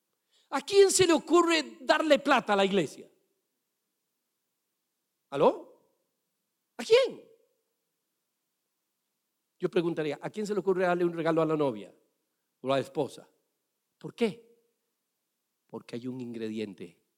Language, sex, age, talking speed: Spanish, male, 50-69, 125 wpm